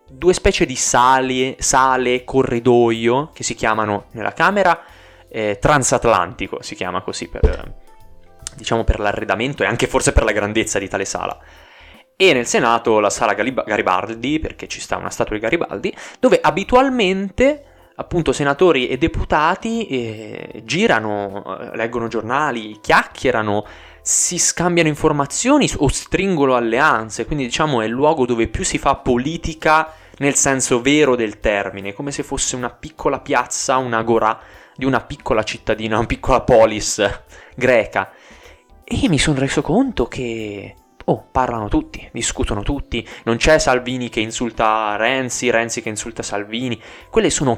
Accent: native